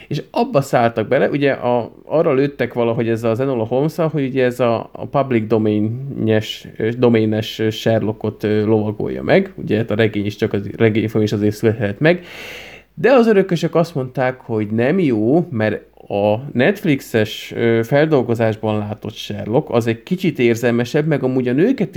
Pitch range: 110-145 Hz